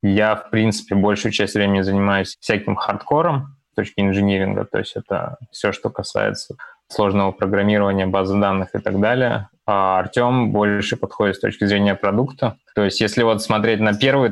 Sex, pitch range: male, 95-110 Hz